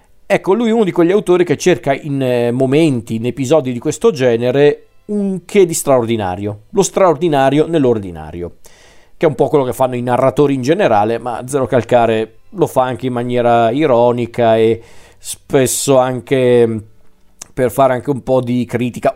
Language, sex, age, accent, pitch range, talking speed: Italian, male, 40-59, native, 120-145 Hz, 165 wpm